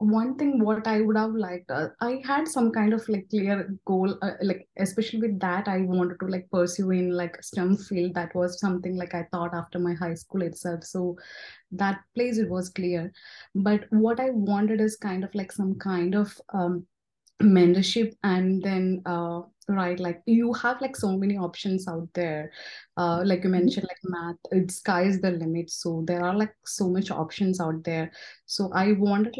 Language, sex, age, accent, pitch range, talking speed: English, female, 20-39, Indian, 175-205 Hz, 195 wpm